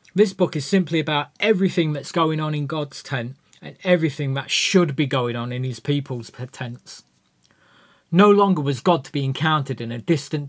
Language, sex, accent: English, male, British